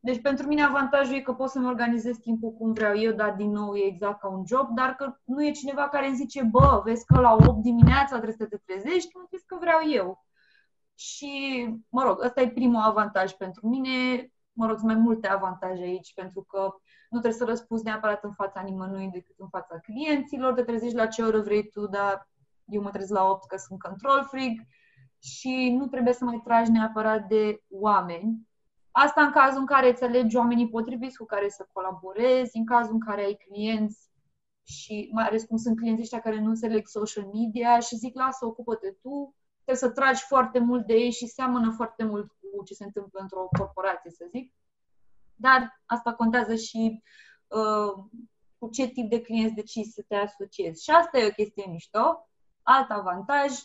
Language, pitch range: Romanian, 205-255 Hz